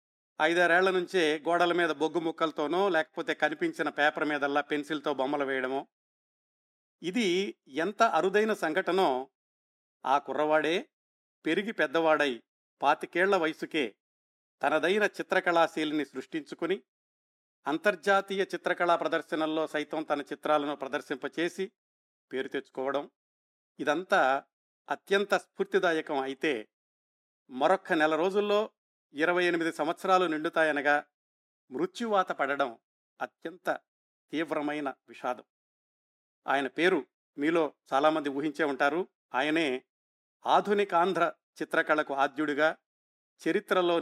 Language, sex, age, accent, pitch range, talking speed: Telugu, male, 50-69, native, 145-180 Hz, 85 wpm